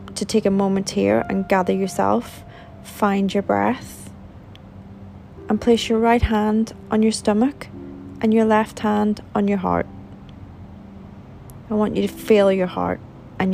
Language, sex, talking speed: English, female, 150 wpm